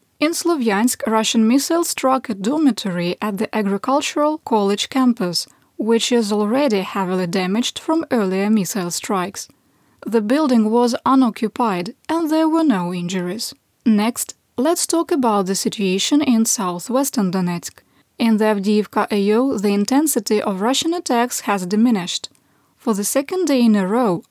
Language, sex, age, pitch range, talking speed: English, female, 20-39, 205-275 Hz, 140 wpm